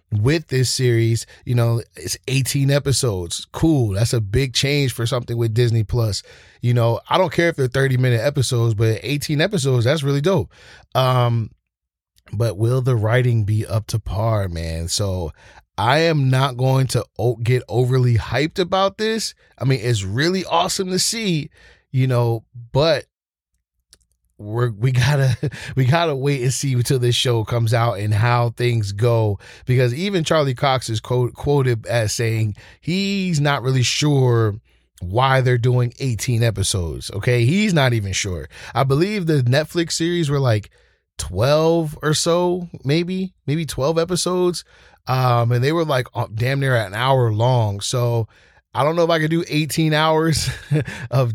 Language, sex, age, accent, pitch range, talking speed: English, male, 20-39, American, 115-145 Hz, 165 wpm